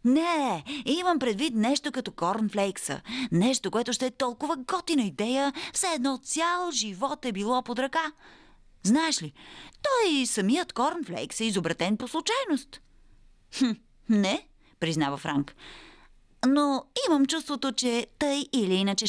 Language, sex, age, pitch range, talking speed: Bulgarian, female, 30-49, 175-275 Hz, 130 wpm